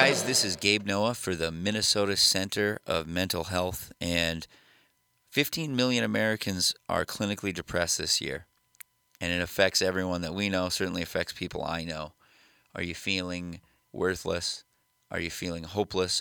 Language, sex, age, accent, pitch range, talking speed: English, male, 30-49, American, 85-95 Hz, 150 wpm